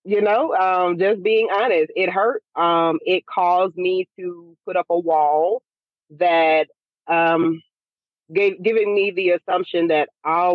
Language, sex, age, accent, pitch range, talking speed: English, female, 30-49, American, 170-210 Hz, 150 wpm